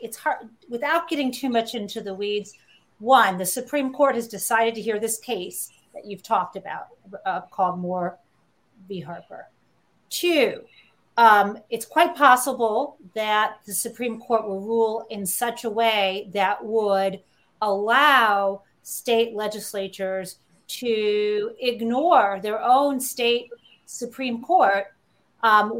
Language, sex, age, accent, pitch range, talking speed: English, female, 40-59, American, 195-240 Hz, 130 wpm